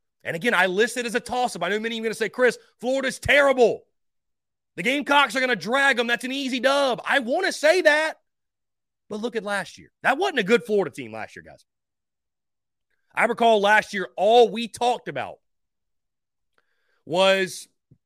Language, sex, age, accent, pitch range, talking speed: English, male, 30-49, American, 170-240 Hz, 195 wpm